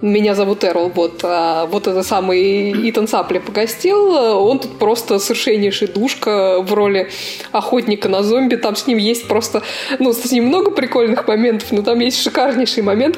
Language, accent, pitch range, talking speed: Russian, native, 205-255 Hz, 165 wpm